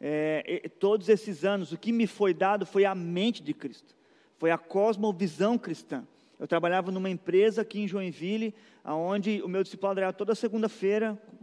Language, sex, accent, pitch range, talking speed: Portuguese, male, Brazilian, 190-225 Hz, 170 wpm